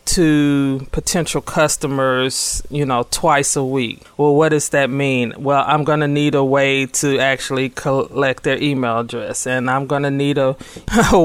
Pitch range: 130-155 Hz